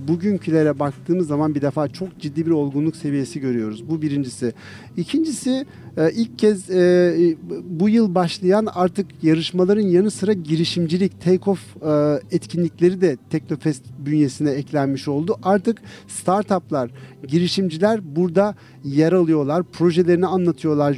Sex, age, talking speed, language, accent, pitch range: male, 50-69, 110 wpm, Turkish, native, 155-195 Hz